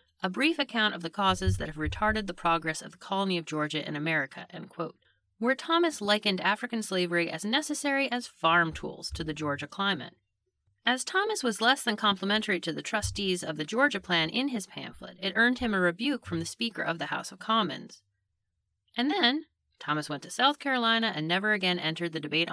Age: 30-49